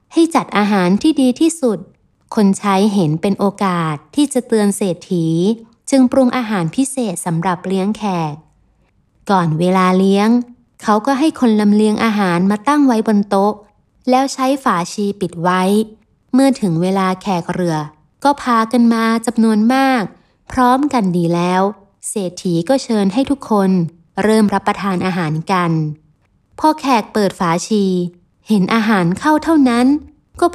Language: Thai